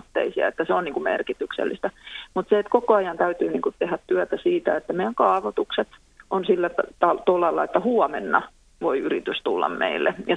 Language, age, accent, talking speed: Finnish, 30-49, native, 180 wpm